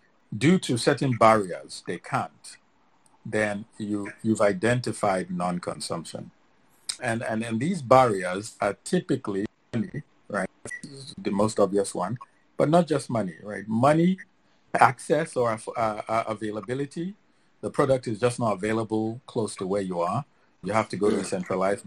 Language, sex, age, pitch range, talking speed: English, male, 50-69, 100-135 Hz, 145 wpm